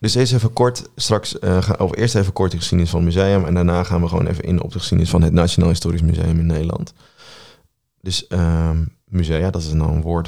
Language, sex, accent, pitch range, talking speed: Dutch, male, Dutch, 80-90 Hz, 230 wpm